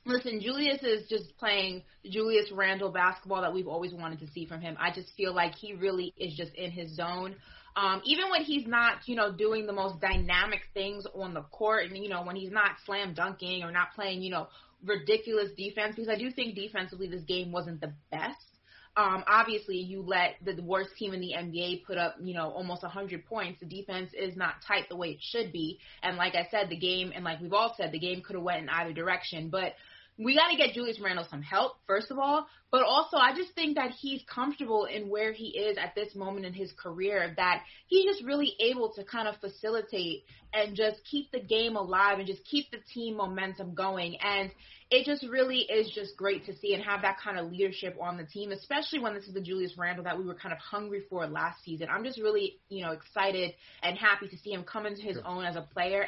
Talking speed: 230 wpm